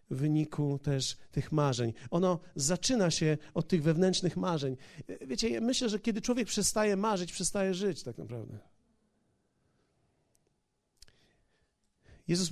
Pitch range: 165-215 Hz